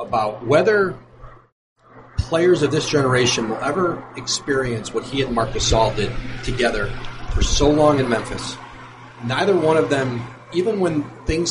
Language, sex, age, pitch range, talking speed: English, male, 40-59, 120-140 Hz, 145 wpm